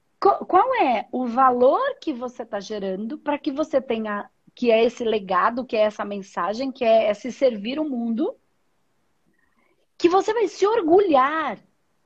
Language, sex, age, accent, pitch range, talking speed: Portuguese, female, 40-59, Brazilian, 200-270 Hz, 165 wpm